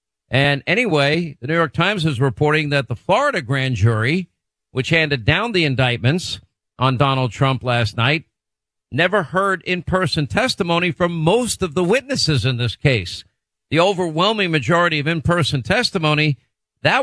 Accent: American